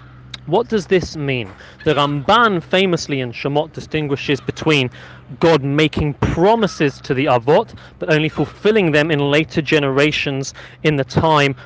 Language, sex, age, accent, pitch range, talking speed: English, male, 30-49, British, 145-180 Hz, 140 wpm